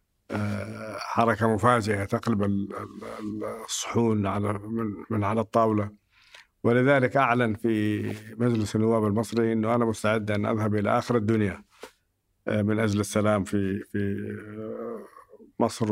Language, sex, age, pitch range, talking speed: Arabic, male, 50-69, 105-115 Hz, 105 wpm